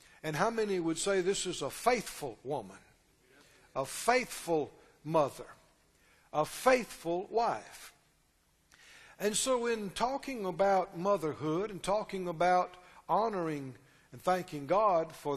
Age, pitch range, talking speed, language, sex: 60-79, 155-215 Hz, 115 wpm, English, male